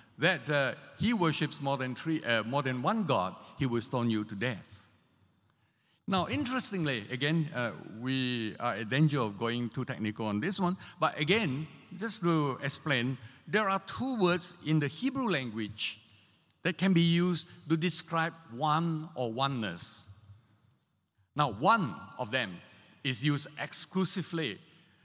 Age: 50-69